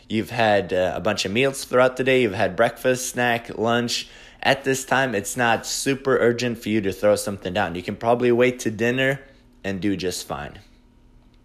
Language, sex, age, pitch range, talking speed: English, male, 20-39, 110-130 Hz, 200 wpm